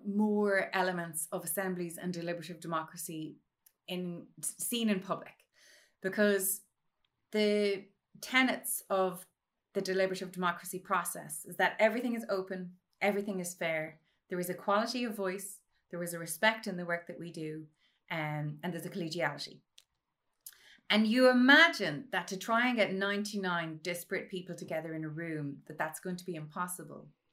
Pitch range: 175-205 Hz